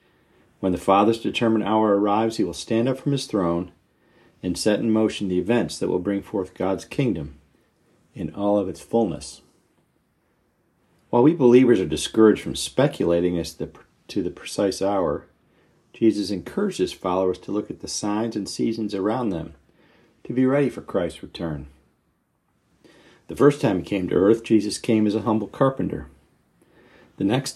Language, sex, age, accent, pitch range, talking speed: English, male, 40-59, American, 95-120 Hz, 165 wpm